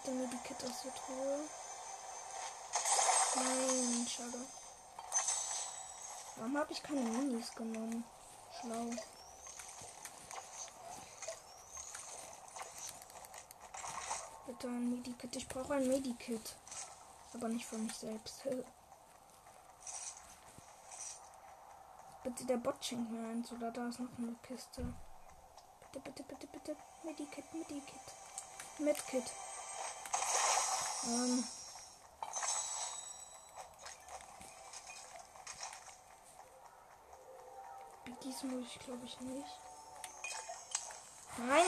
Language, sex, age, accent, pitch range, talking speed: German, female, 20-39, German, 245-295 Hz, 75 wpm